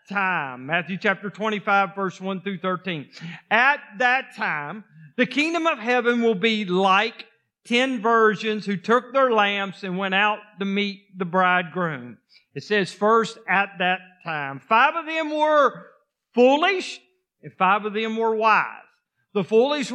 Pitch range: 200-270 Hz